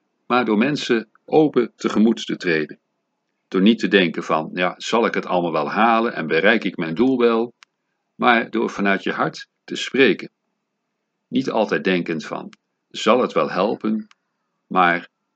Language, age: Dutch, 50-69